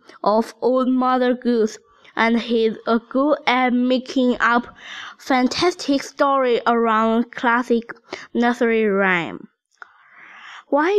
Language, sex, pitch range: Chinese, female, 250-315 Hz